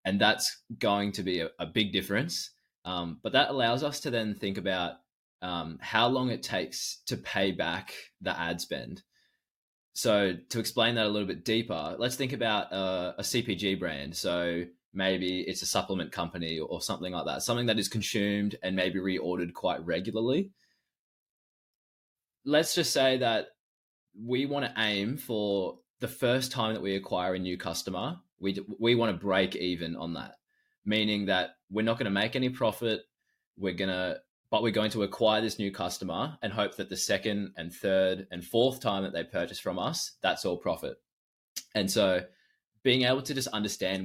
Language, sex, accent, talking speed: English, male, Australian, 180 wpm